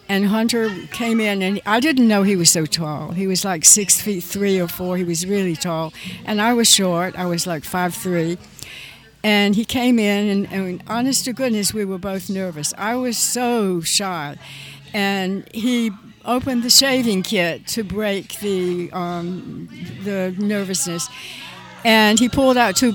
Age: 60-79